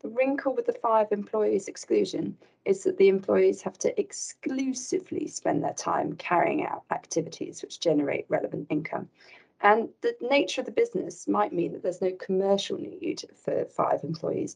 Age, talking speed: 40-59, 165 wpm